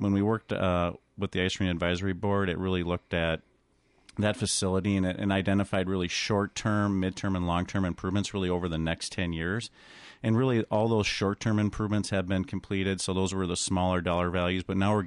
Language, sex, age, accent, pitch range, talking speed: English, male, 40-59, American, 85-100 Hz, 205 wpm